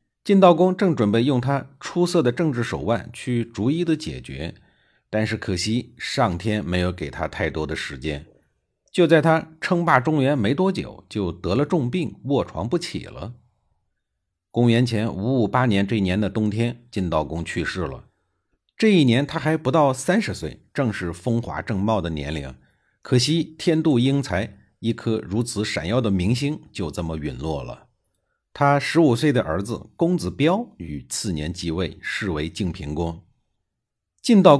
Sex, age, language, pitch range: male, 50-69, Chinese, 90-145 Hz